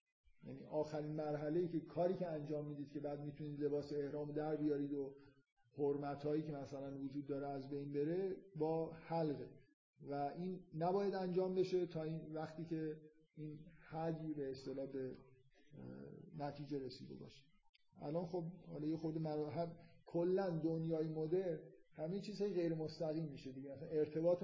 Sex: male